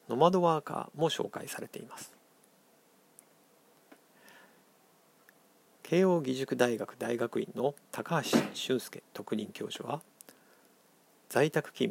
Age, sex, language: 50-69, male, Japanese